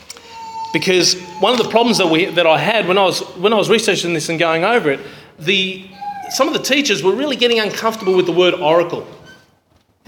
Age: 30-49